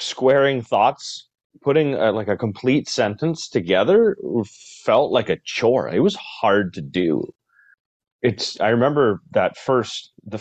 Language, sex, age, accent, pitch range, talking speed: English, male, 30-49, American, 100-125 Hz, 140 wpm